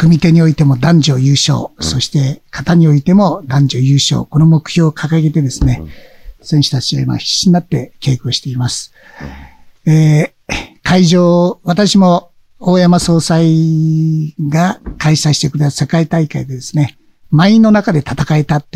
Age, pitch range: 60-79, 130-160 Hz